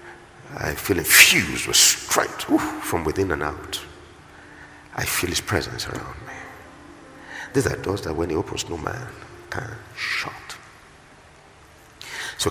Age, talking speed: 50-69, 135 wpm